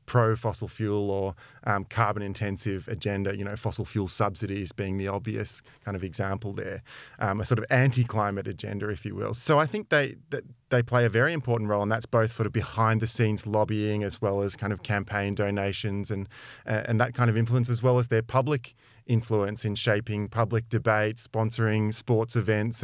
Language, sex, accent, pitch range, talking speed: English, male, Australian, 105-125 Hz, 200 wpm